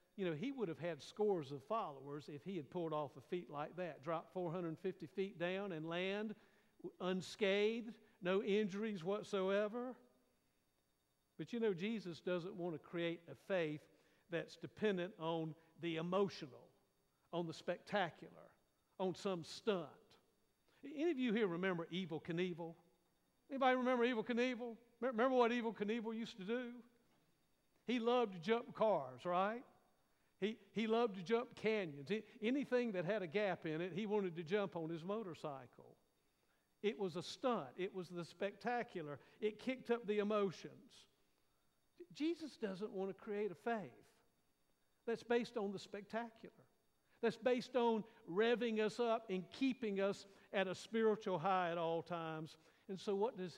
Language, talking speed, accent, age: English, 155 wpm, American, 60-79